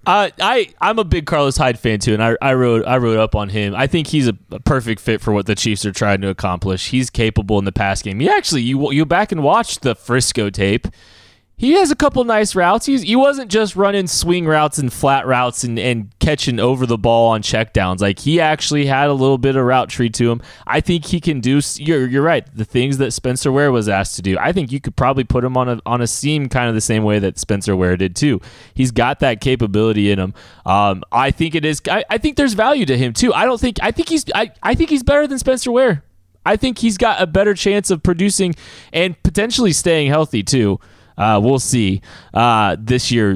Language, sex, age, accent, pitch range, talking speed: English, male, 20-39, American, 110-155 Hz, 245 wpm